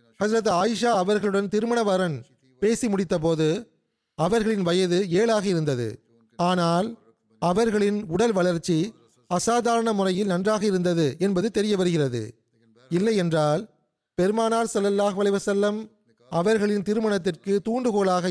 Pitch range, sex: 155-210 Hz, male